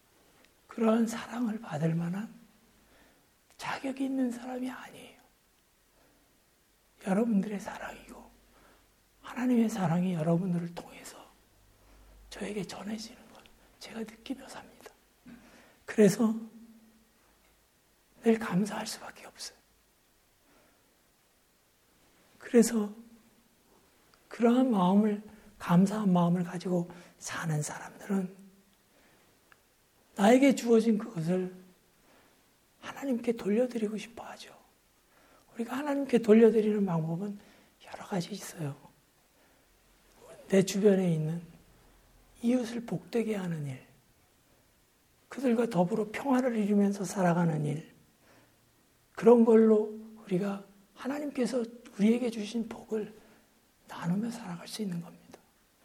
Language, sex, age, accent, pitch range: Korean, male, 60-79, native, 185-230 Hz